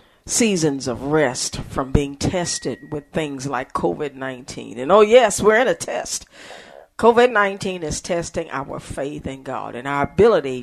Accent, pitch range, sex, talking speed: American, 140-205 Hz, female, 150 wpm